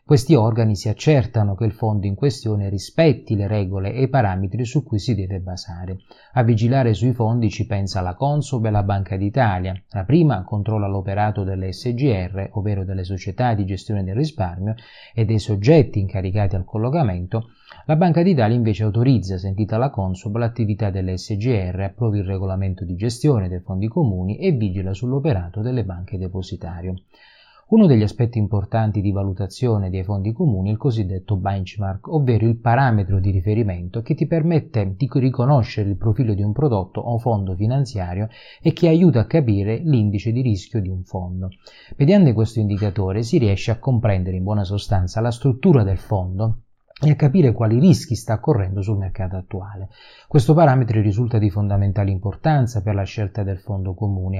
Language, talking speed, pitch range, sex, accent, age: Italian, 170 wpm, 95-120 Hz, male, native, 30-49